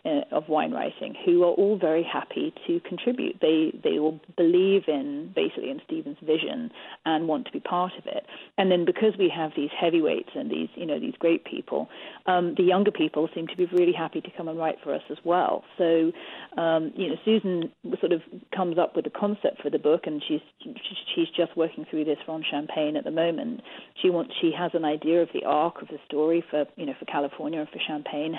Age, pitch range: 40-59, 155-190 Hz